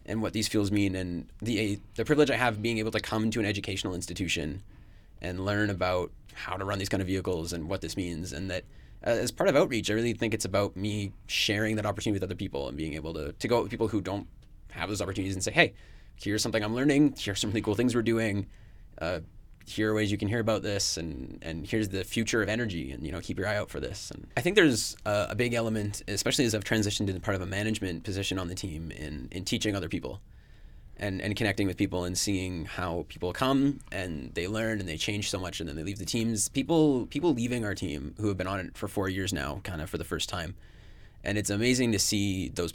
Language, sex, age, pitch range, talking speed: English, male, 20-39, 90-110 Hz, 255 wpm